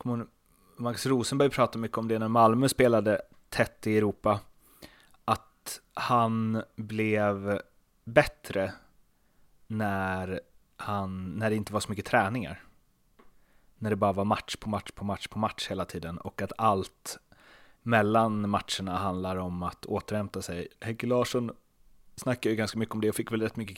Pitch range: 100-115 Hz